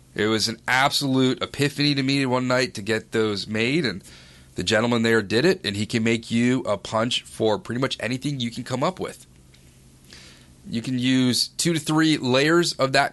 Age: 30-49